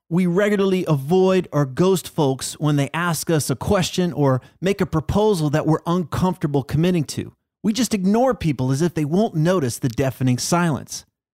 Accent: American